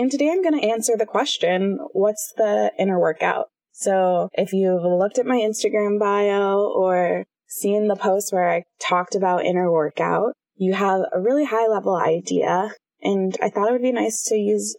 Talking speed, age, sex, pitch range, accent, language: 185 wpm, 20-39, female, 180-220 Hz, American, English